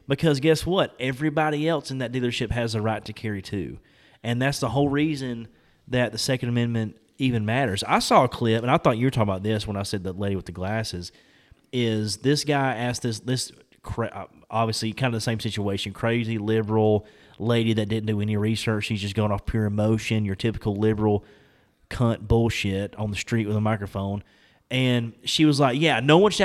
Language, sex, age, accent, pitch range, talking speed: English, male, 30-49, American, 110-135 Hz, 205 wpm